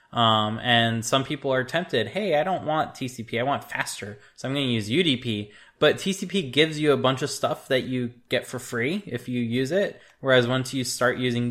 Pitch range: 115-135 Hz